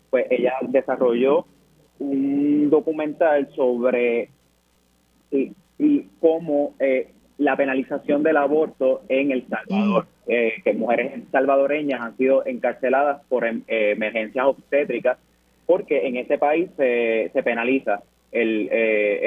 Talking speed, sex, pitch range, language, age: 115 wpm, male, 120-145 Hz, Spanish, 30-49